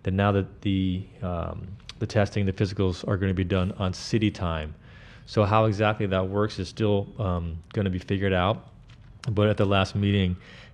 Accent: American